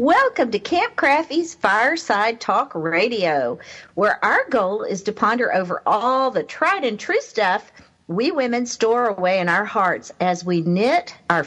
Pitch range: 180-245 Hz